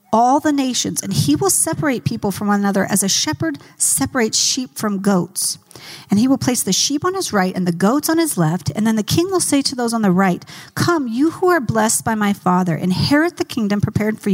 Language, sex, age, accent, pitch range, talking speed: English, female, 40-59, American, 180-250 Hz, 240 wpm